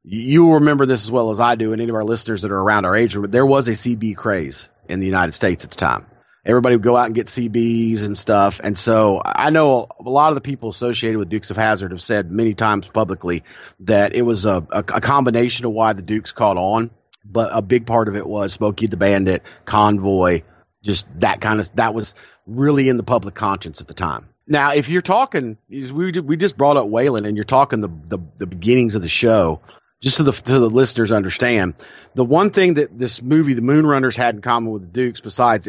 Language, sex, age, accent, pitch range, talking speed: English, male, 40-59, American, 105-130 Hz, 235 wpm